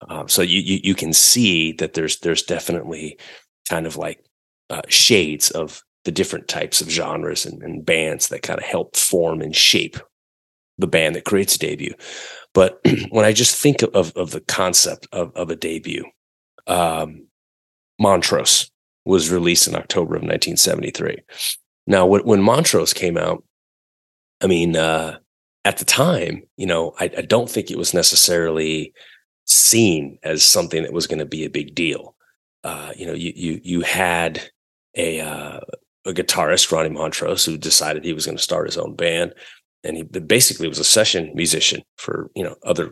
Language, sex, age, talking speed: English, male, 30-49, 175 wpm